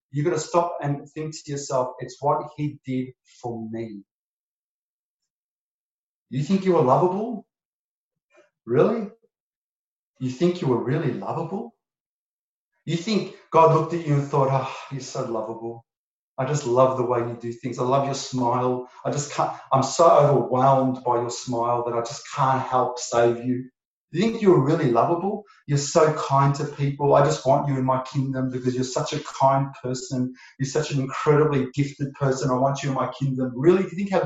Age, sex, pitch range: 30-49, male, 130-160 Hz